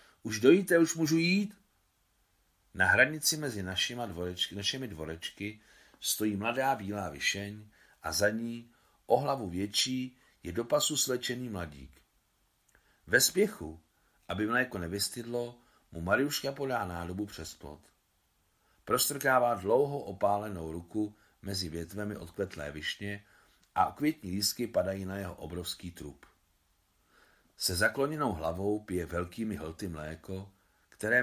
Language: Czech